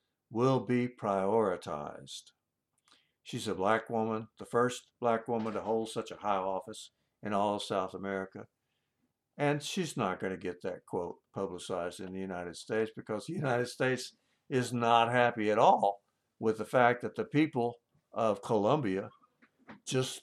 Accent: American